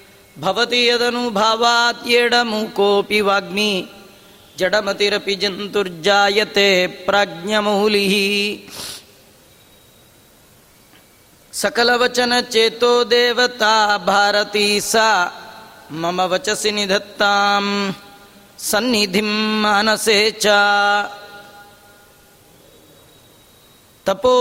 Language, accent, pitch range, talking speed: Kannada, native, 200-225 Hz, 35 wpm